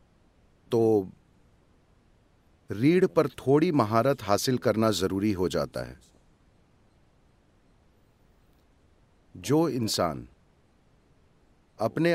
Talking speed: 70 wpm